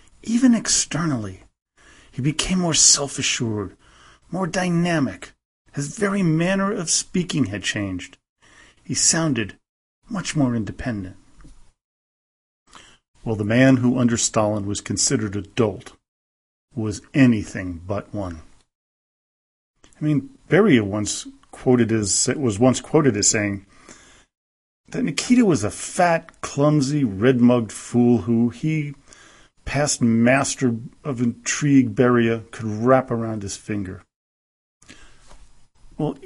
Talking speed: 110 wpm